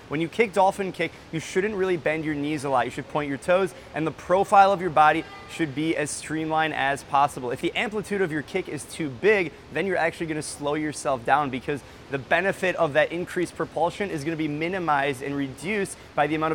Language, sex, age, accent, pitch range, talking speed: English, male, 20-39, American, 145-175 Hz, 225 wpm